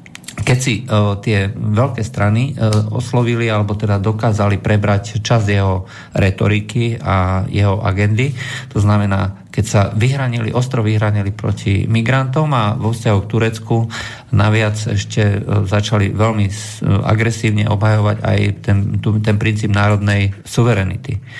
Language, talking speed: Slovak, 130 wpm